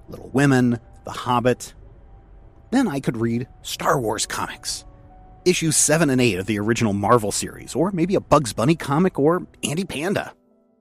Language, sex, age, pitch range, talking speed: English, male, 40-59, 105-135 Hz, 160 wpm